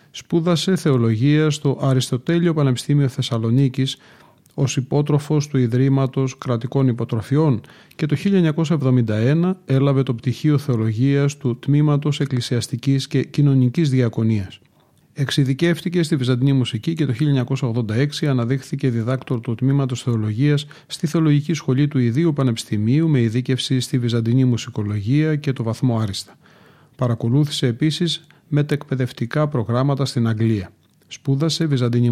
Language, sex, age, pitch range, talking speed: Greek, male, 40-59, 120-150 Hz, 110 wpm